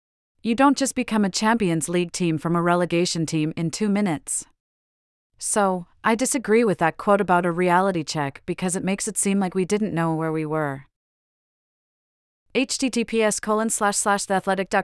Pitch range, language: 180-210 Hz, English